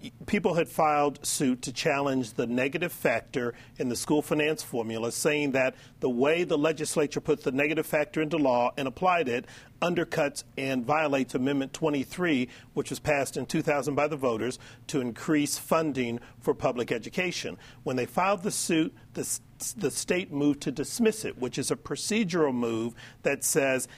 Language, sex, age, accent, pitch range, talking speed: English, male, 50-69, American, 125-155 Hz, 170 wpm